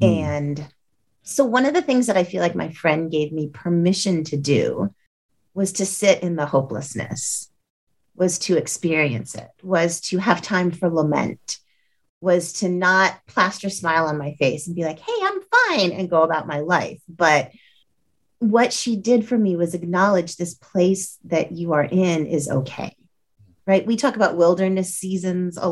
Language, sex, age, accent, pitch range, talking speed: English, female, 30-49, American, 155-210 Hz, 175 wpm